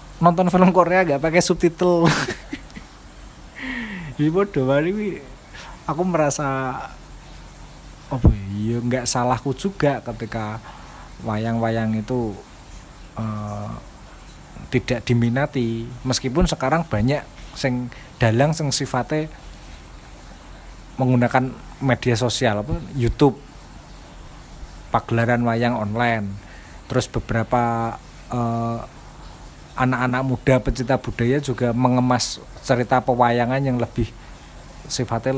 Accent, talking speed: native, 85 wpm